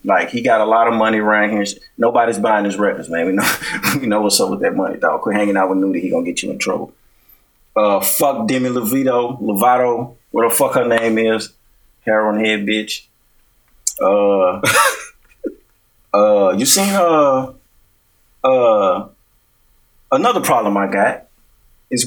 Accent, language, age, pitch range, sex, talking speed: American, English, 30-49, 105-130 Hz, male, 165 wpm